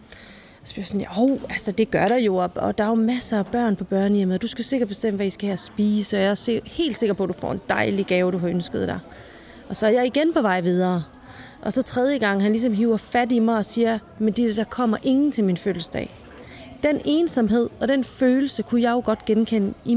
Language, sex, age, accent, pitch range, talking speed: Danish, female, 30-49, native, 200-245 Hz, 245 wpm